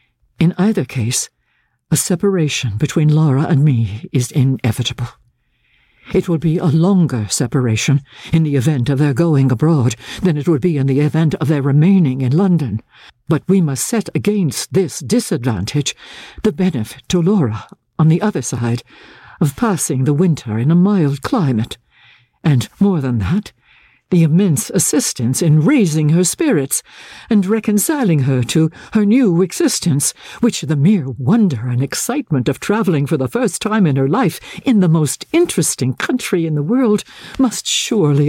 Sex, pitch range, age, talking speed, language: female, 130-190 Hz, 60-79, 160 wpm, English